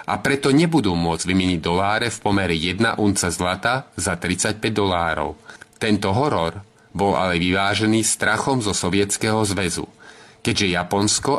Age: 30-49